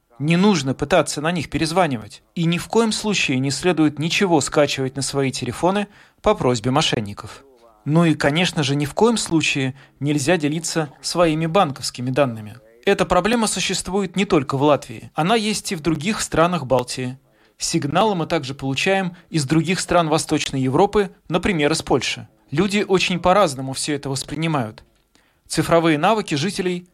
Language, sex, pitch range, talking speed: Russian, male, 135-180 Hz, 155 wpm